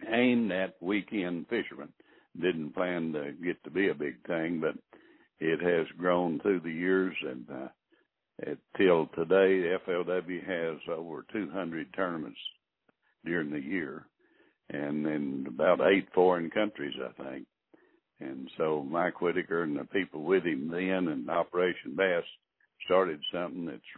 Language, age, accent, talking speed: English, 60-79, American, 145 wpm